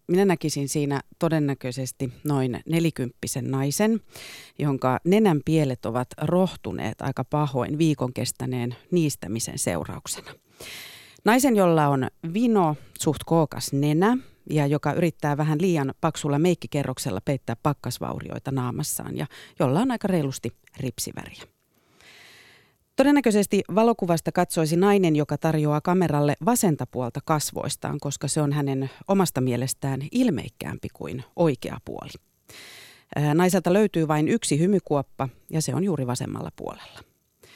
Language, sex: Finnish, female